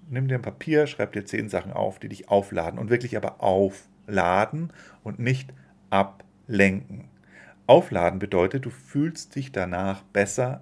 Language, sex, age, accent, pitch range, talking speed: German, male, 40-59, German, 100-135 Hz, 145 wpm